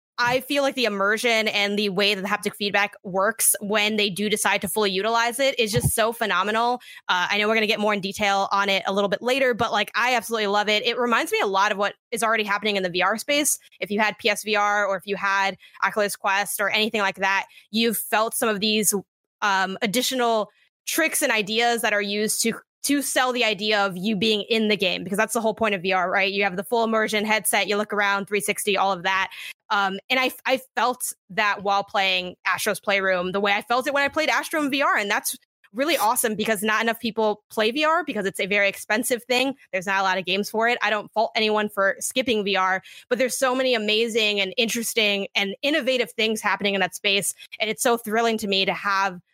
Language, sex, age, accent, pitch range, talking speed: English, female, 20-39, American, 200-230 Hz, 235 wpm